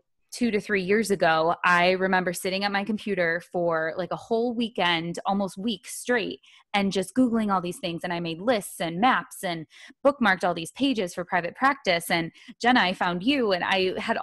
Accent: American